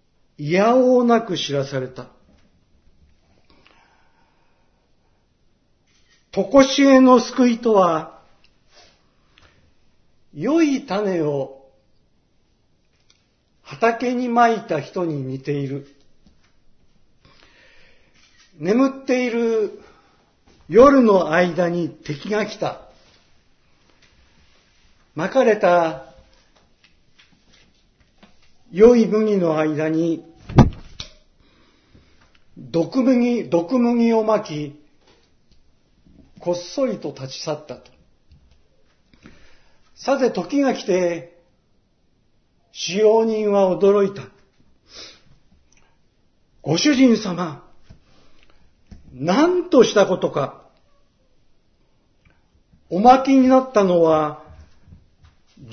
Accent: native